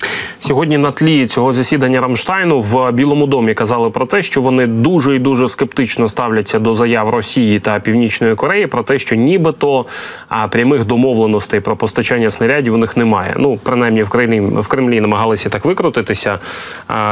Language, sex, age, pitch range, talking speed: Ukrainian, male, 20-39, 110-130 Hz, 160 wpm